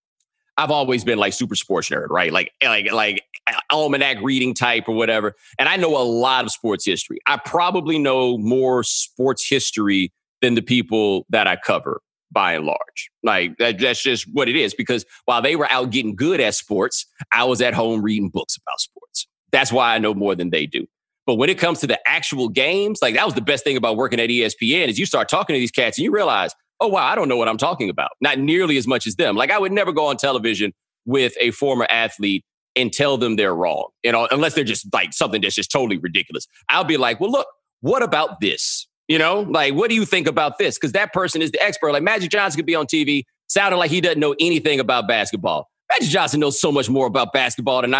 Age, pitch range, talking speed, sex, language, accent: 30-49, 120-165 Hz, 235 wpm, male, English, American